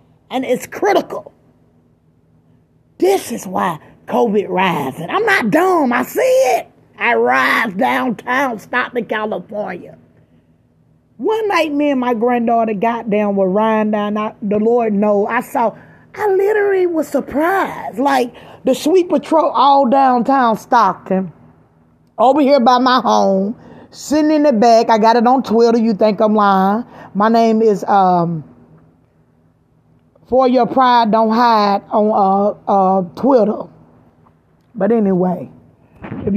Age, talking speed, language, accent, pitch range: 30-49, 135 wpm, English, American, 200-255 Hz